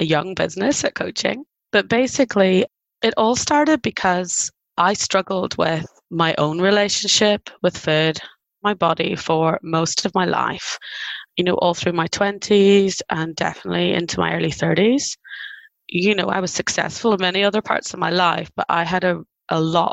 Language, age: English, 20-39